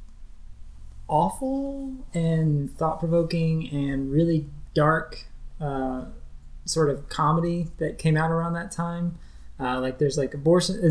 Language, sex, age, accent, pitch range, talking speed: English, male, 20-39, American, 135-160 Hz, 115 wpm